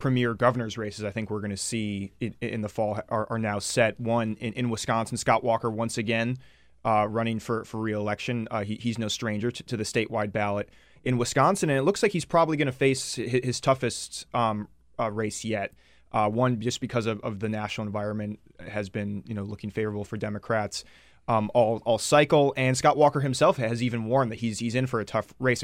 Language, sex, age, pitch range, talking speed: English, male, 20-39, 110-125 Hz, 220 wpm